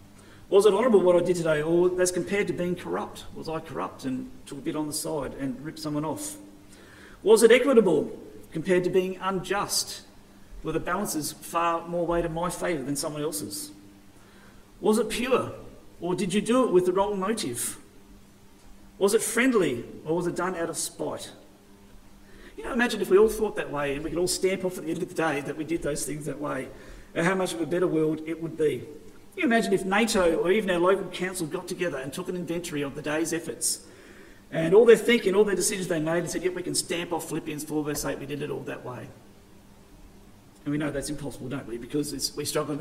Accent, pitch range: Australian, 125-180 Hz